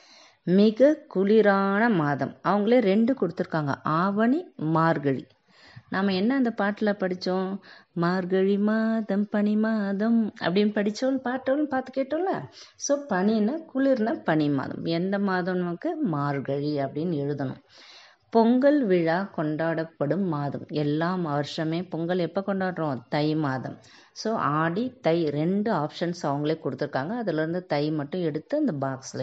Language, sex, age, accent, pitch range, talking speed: Tamil, female, 20-39, native, 150-200 Hz, 115 wpm